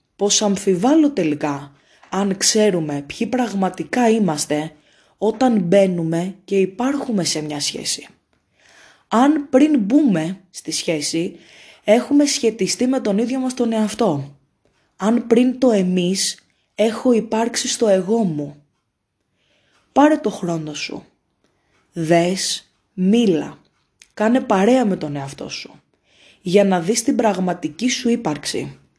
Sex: female